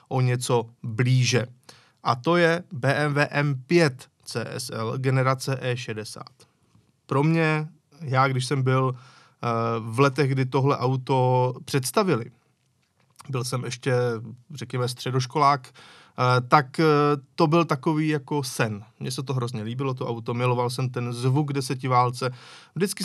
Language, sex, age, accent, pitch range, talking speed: Czech, male, 20-39, native, 125-150 Hz, 120 wpm